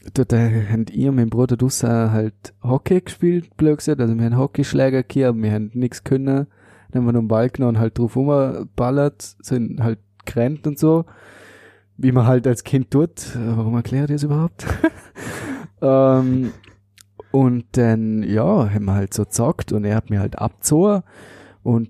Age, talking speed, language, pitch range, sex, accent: 20-39, 180 wpm, German, 105-135 Hz, male, German